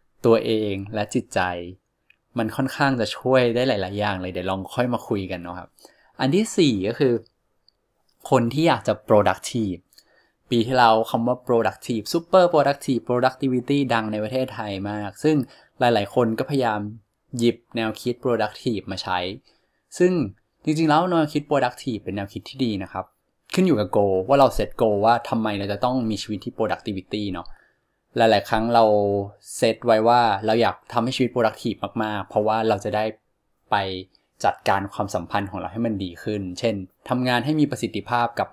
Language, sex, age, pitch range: Thai, male, 20-39, 100-125 Hz